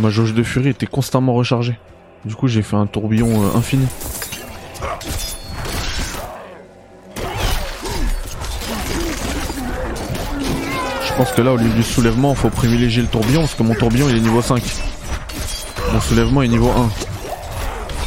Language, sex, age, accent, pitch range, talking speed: French, male, 20-39, French, 100-120 Hz, 135 wpm